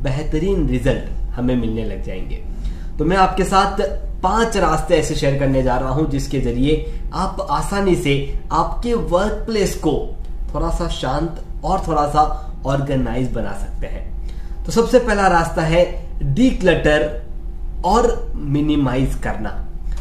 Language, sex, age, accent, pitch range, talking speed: Hindi, male, 20-39, native, 135-195 Hz, 130 wpm